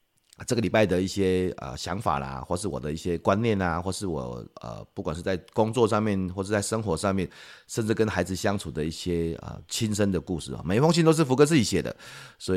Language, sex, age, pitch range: Chinese, male, 30-49, 80-105 Hz